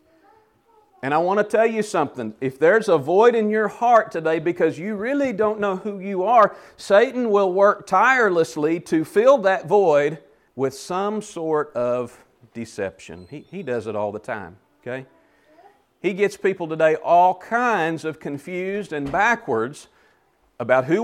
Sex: male